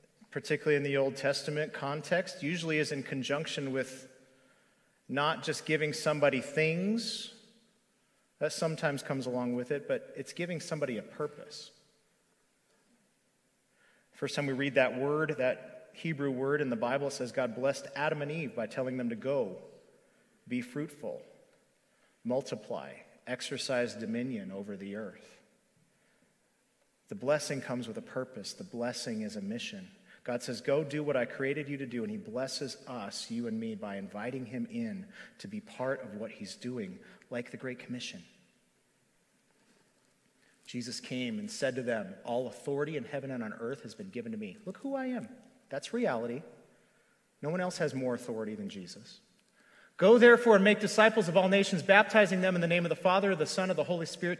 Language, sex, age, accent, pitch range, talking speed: English, male, 40-59, American, 135-210 Hz, 170 wpm